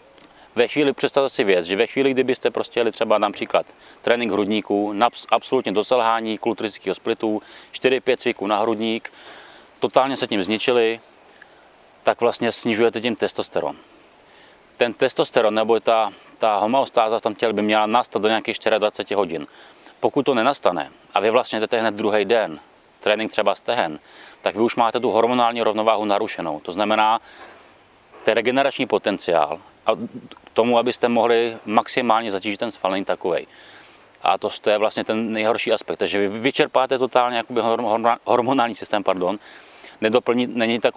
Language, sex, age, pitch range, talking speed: Czech, male, 30-49, 110-120 Hz, 145 wpm